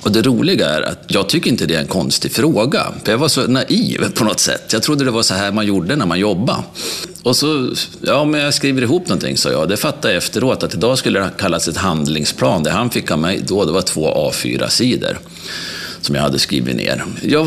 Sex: male